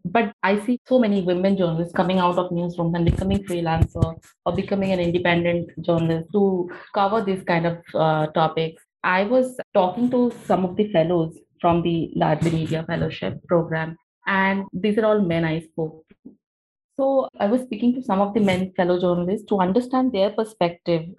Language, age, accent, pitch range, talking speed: Hindi, 30-49, native, 165-205 Hz, 180 wpm